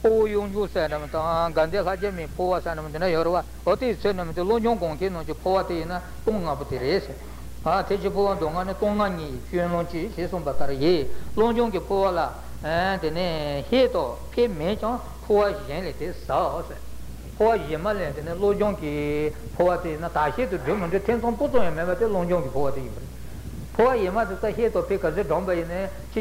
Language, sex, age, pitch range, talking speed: Italian, male, 60-79, 155-210 Hz, 45 wpm